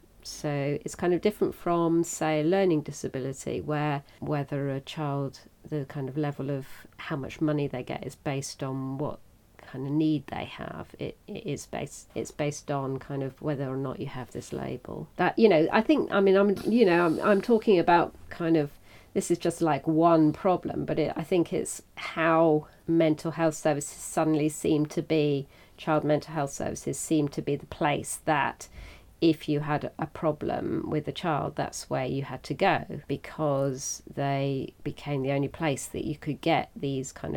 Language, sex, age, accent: English, female, 40-59, British